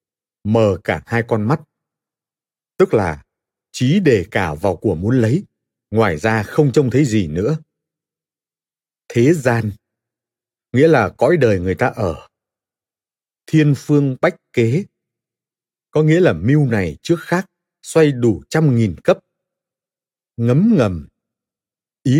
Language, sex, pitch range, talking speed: Vietnamese, male, 105-150 Hz, 130 wpm